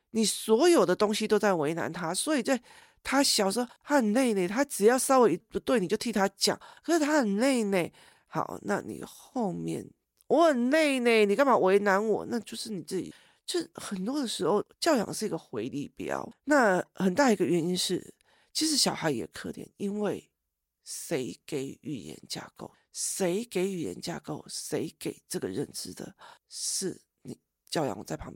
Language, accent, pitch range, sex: Chinese, native, 175-250 Hz, male